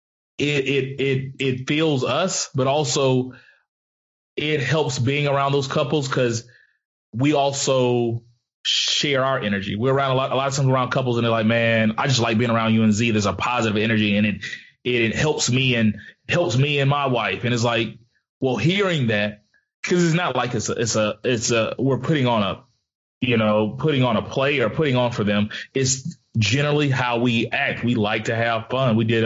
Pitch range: 115-135 Hz